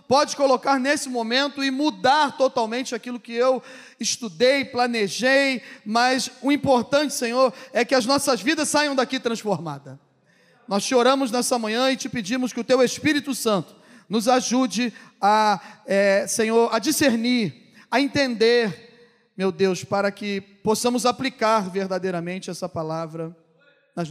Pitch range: 195-255 Hz